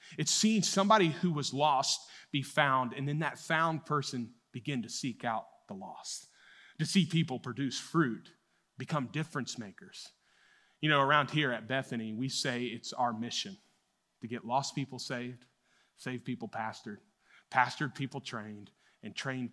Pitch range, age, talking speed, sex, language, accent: 120-155 Hz, 30-49, 155 wpm, male, English, American